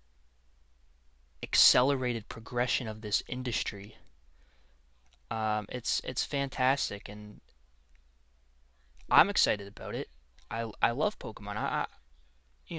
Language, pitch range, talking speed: English, 75-120 Hz, 100 wpm